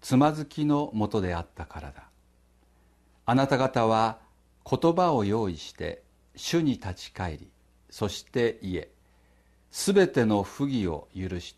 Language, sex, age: Japanese, male, 50-69